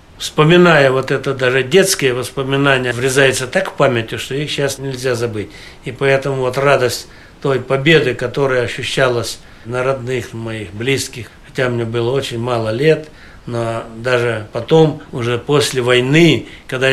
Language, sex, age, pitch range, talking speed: Russian, male, 60-79, 115-135 Hz, 140 wpm